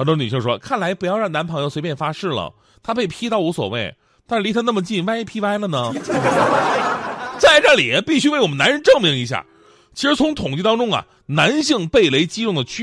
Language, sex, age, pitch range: Chinese, male, 30-49, 125-210 Hz